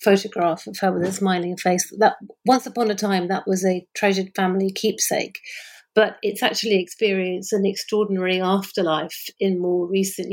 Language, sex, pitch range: English, female, 185-210 Hz